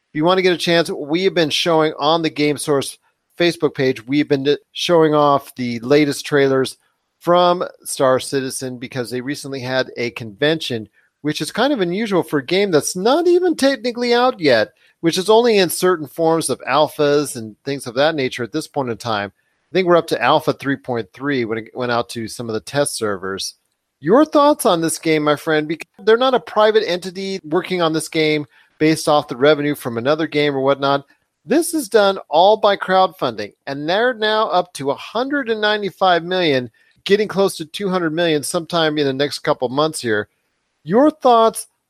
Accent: American